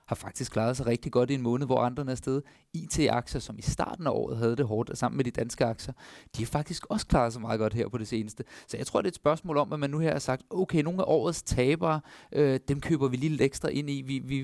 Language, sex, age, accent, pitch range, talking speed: Danish, male, 30-49, native, 120-150 Hz, 285 wpm